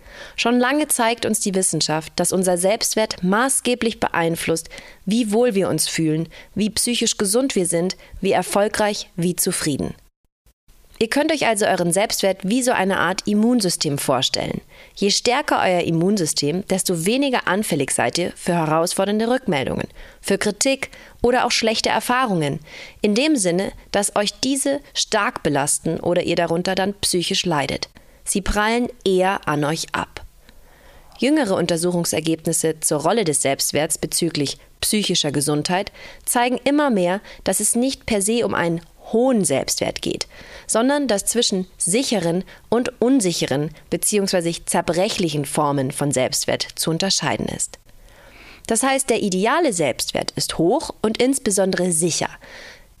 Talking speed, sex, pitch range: 135 wpm, female, 170-230 Hz